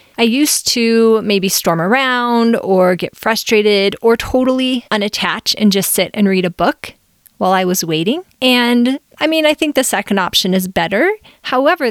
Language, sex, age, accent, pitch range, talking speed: English, female, 30-49, American, 190-240 Hz, 170 wpm